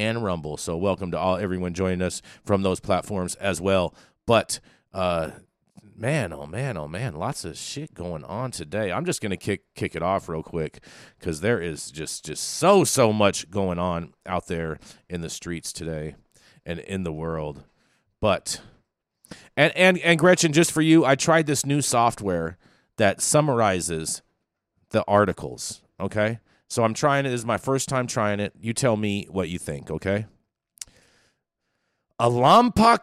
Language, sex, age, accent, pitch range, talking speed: English, male, 40-59, American, 90-145 Hz, 175 wpm